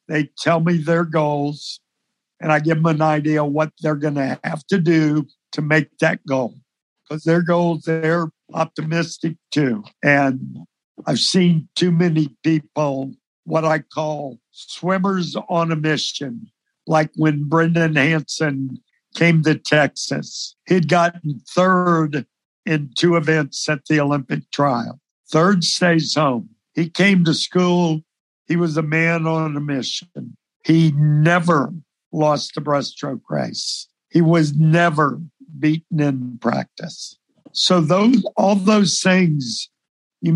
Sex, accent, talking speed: male, American, 135 wpm